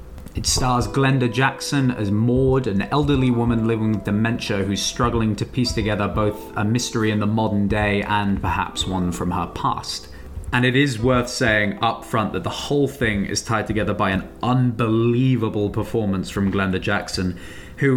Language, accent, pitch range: English, British, 100-125 Hz